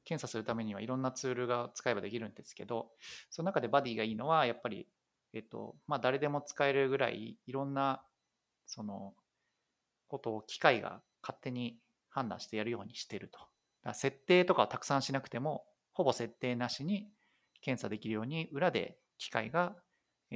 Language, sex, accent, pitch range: Japanese, male, native, 110-140 Hz